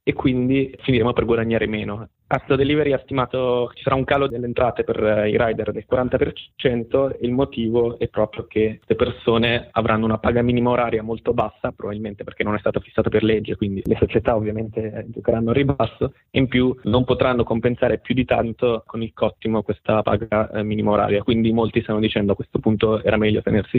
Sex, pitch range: male, 105-120 Hz